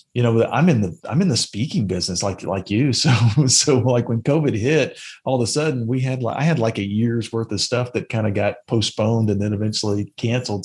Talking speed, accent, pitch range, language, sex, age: 240 wpm, American, 110-140 Hz, English, male, 40-59